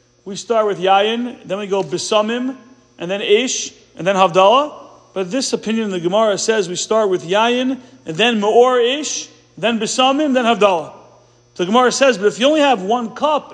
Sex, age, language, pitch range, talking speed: male, 40-59, English, 195-245 Hz, 190 wpm